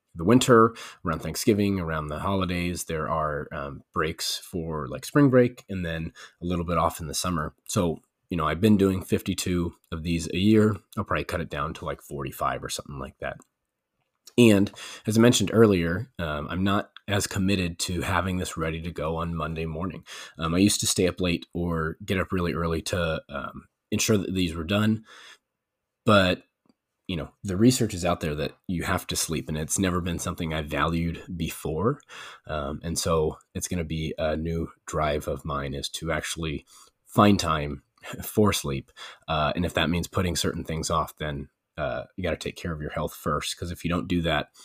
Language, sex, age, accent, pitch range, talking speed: English, male, 30-49, American, 80-95 Hz, 205 wpm